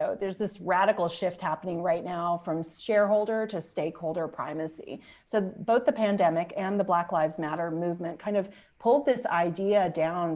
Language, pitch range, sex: English, 165-205 Hz, female